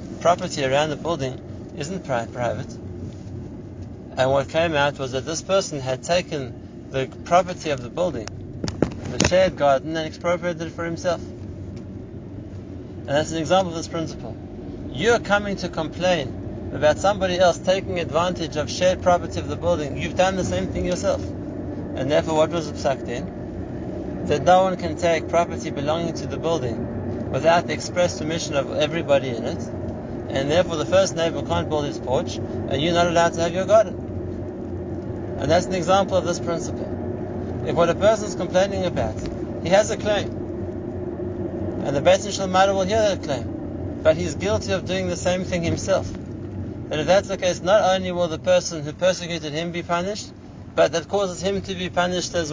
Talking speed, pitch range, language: 180 wpm, 130-180 Hz, English